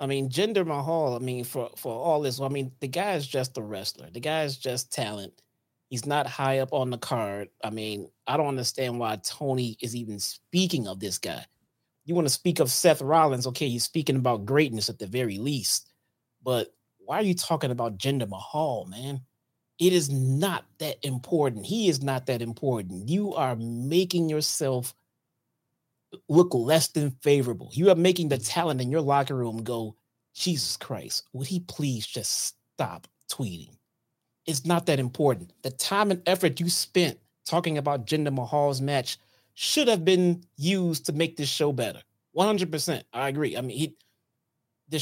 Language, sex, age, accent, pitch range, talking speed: English, male, 30-49, American, 125-160 Hz, 180 wpm